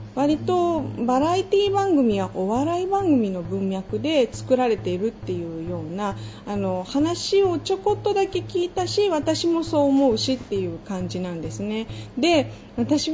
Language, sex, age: Japanese, female, 40-59